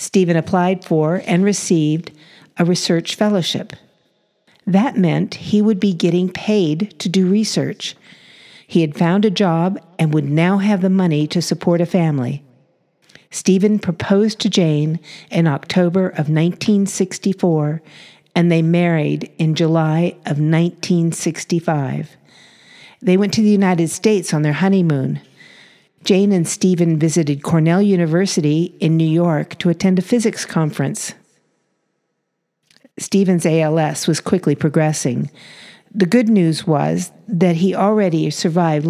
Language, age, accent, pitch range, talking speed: English, 50-69, American, 160-190 Hz, 130 wpm